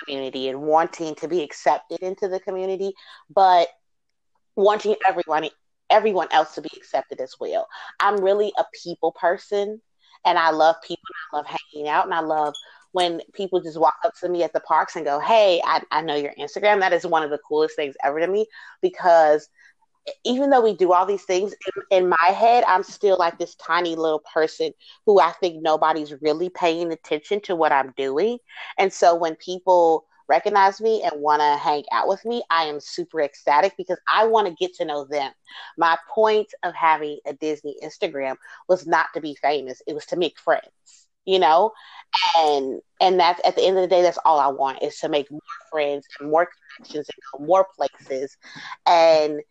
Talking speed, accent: 195 wpm, American